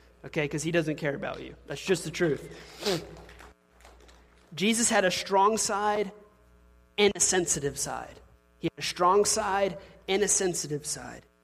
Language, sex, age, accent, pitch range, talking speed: English, male, 30-49, American, 135-180 Hz, 150 wpm